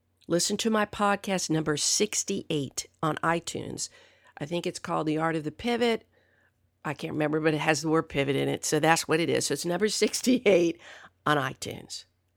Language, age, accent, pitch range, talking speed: English, 50-69, American, 155-245 Hz, 190 wpm